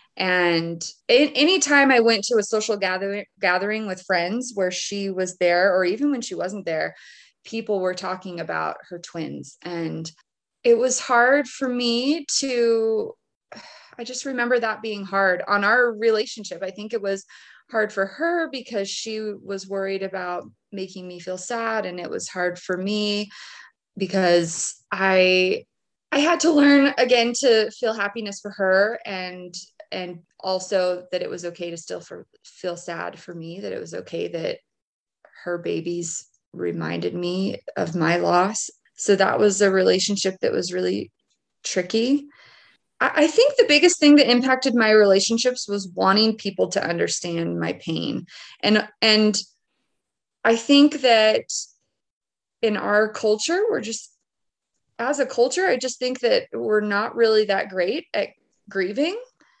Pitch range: 185-245 Hz